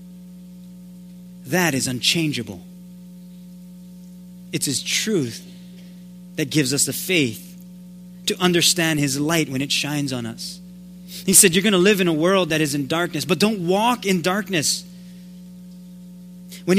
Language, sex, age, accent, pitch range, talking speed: English, male, 30-49, American, 165-180 Hz, 140 wpm